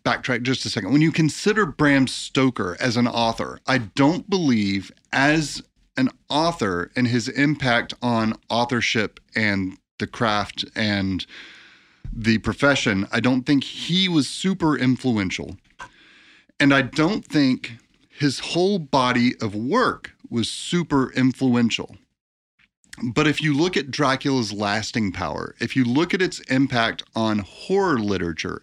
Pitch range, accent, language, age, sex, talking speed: 110-145 Hz, American, English, 40-59, male, 135 wpm